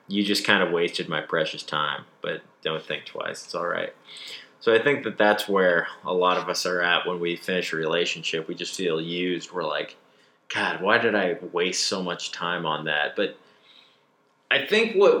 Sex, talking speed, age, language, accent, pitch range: male, 205 wpm, 30-49, English, American, 95-125 Hz